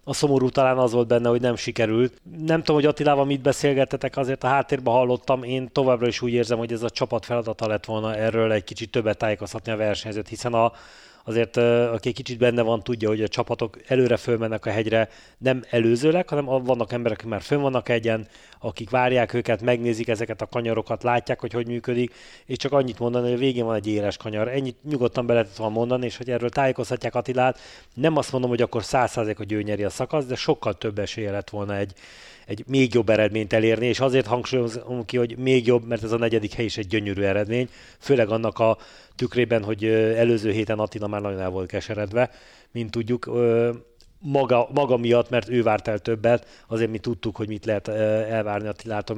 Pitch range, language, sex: 110-125 Hz, Hungarian, male